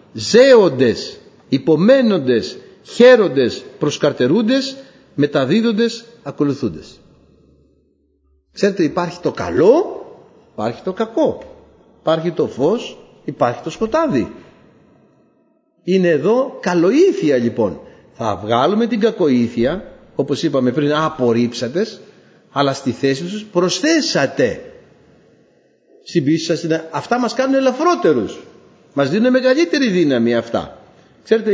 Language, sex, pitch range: Greek, male, 135-225 Hz